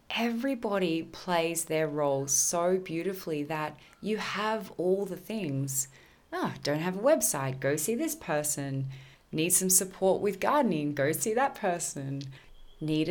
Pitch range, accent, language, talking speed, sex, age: 145-180 Hz, Australian, English, 140 wpm, female, 20-39